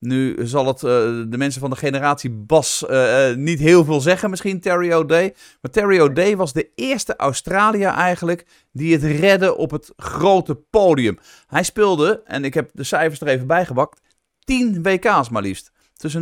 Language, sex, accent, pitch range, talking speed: Dutch, male, Dutch, 135-175 Hz, 180 wpm